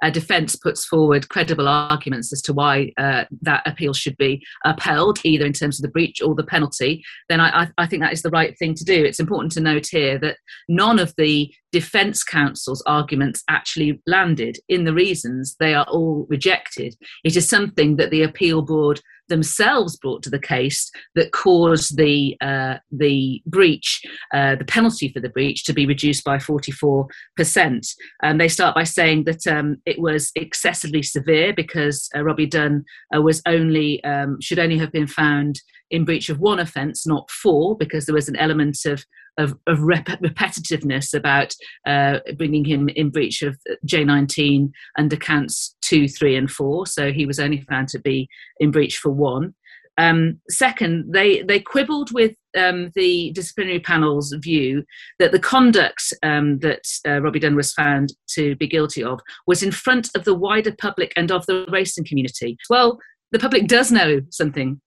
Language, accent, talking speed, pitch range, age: English, British, 180 wpm, 145-170 Hz, 40-59